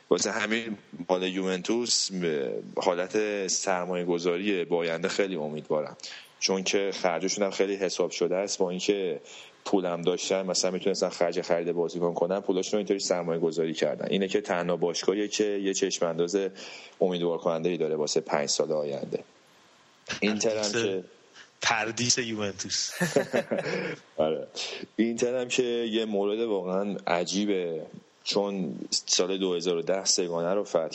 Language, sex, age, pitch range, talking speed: Persian, male, 30-49, 85-105 Hz, 125 wpm